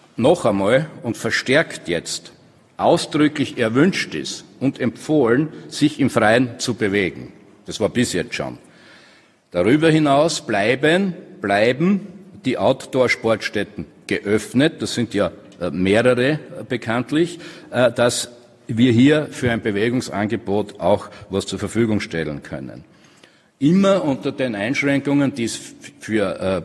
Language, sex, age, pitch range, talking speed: German, male, 60-79, 100-125 Hz, 115 wpm